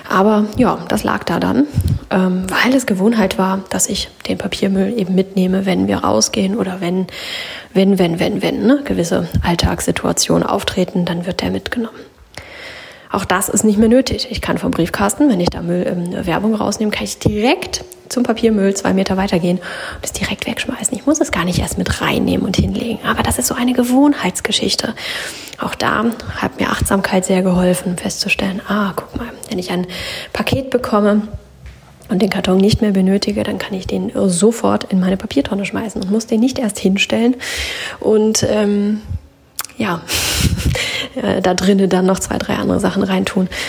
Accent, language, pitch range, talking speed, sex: German, German, 190-230 Hz, 175 wpm, female